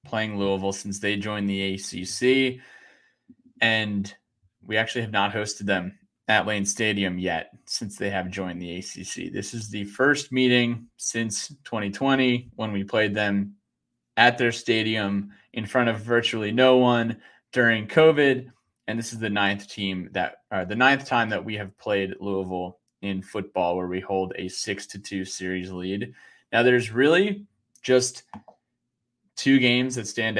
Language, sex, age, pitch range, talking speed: English, male, 20-39, 100-115 Hz, 160 wpm